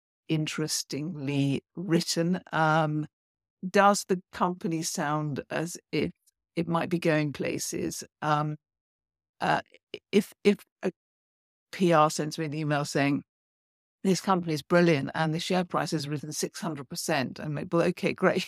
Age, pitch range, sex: 50-69, 150-180 Hz, female